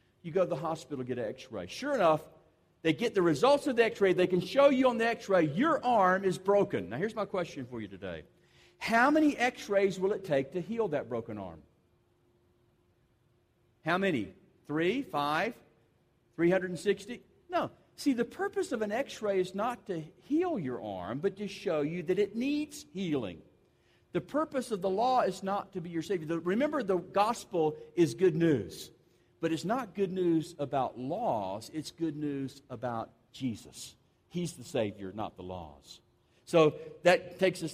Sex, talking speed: male, 175 wpm